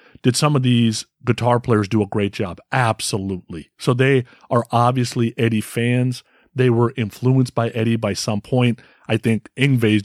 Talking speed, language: 175 wpm, English